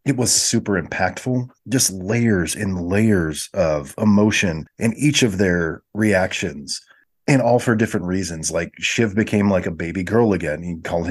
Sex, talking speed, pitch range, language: male, 160 wpm, 95-115 Hz, English